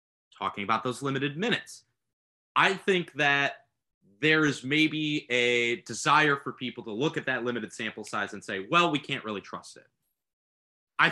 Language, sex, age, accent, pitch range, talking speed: English, male, 30-49, American, 115-165 Hz, 165 wpm